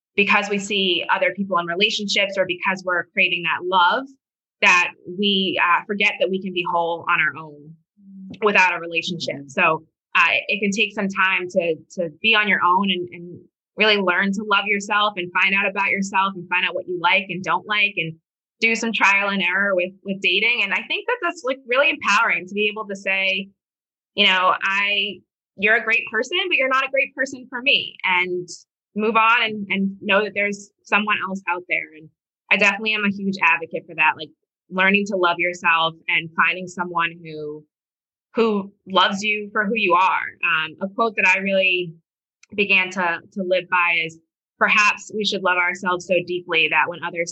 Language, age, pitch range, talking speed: English, 20-39, 175-205 Hz, 200 wpm